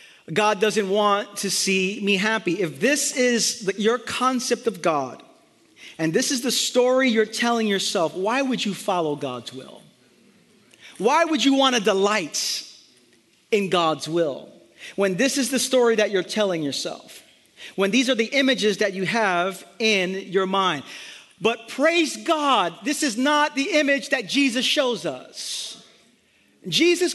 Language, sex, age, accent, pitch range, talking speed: English, male, 40-59, American, 210-290 Hz, 155 wpm